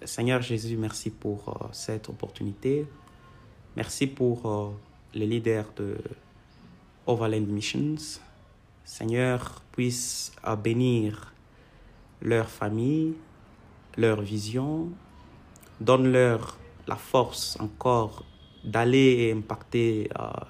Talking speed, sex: 75 wpm, male